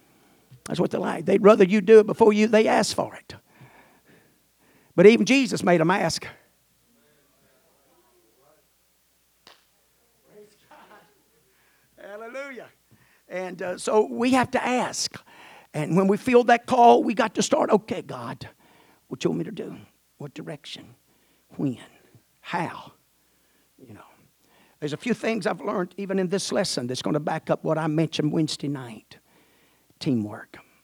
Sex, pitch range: male, 140-200 Hz